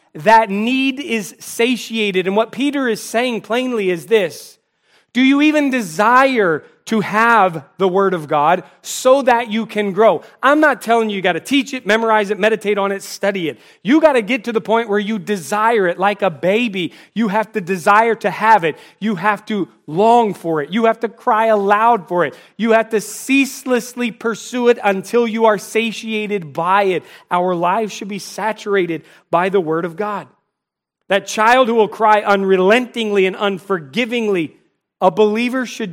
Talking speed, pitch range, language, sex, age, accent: 180 wpm, 180-225 Hz, English, male, 30-49, American